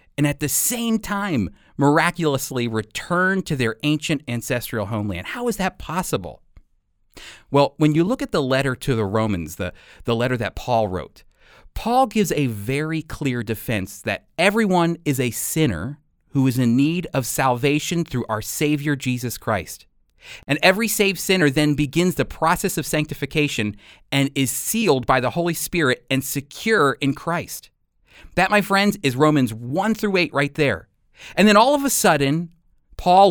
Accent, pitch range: American, 120-175 Hz